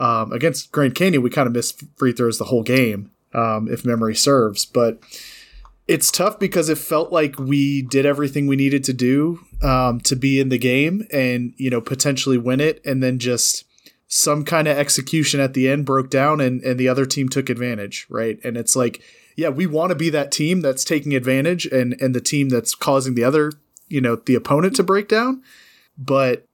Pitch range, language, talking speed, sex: 125-145 Hz, English, 210 wpm, male